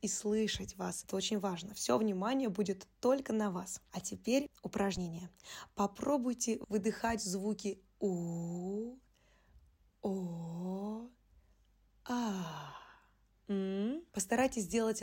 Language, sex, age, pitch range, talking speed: Russian, female, 20-39, 195-225 Hz, 95 wpm